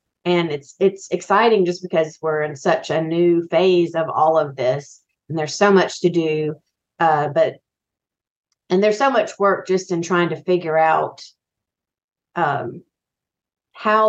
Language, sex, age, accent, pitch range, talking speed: English, female, 40-59, American, 155-180 Hz, 160 wpm